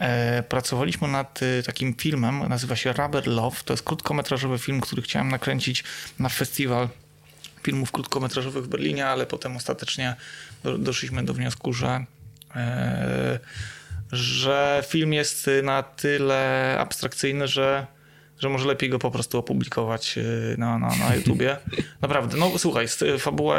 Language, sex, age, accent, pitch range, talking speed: Polish, male, 20-39, native, 120-140 Hz, 125 wpm